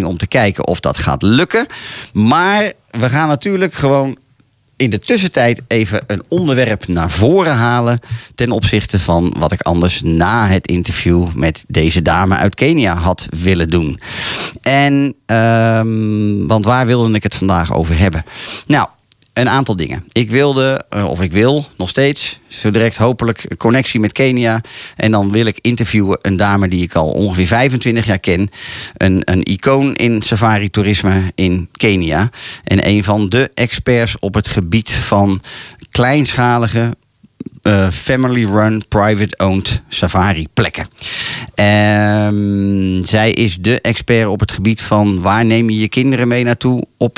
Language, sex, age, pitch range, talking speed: Dutch, male, 40-59, 95-120 Hz, 150 wpm